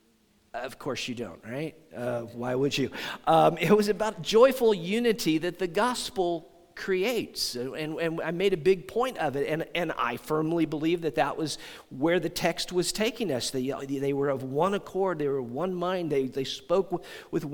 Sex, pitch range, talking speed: male, 135-180 Hz, 200 wpm